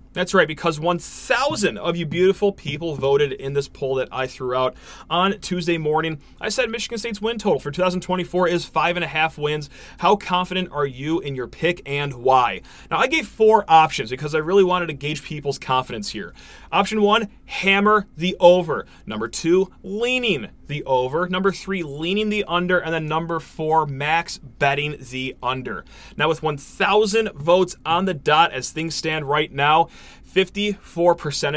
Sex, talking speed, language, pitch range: male, 175 wpm, English, 150-205 Hz